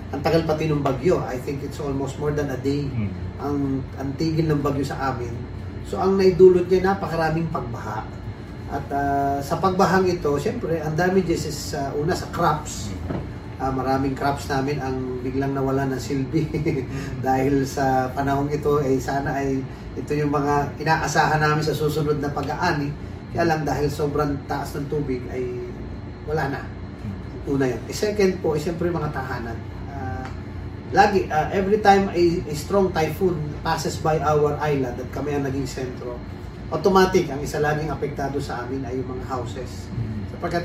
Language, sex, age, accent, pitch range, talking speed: Filipino, male, 30-49, native, 130-160 Hz, 165 wpm